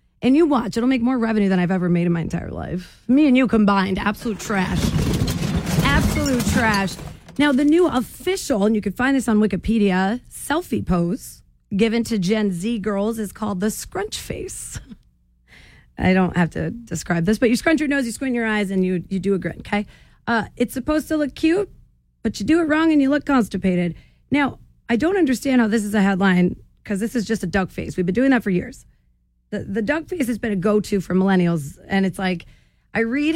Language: English